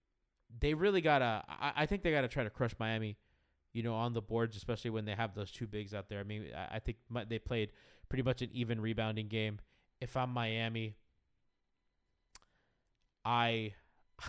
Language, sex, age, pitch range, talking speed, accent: English, male, 20-39, 110-135 Hz, 185 wpm, American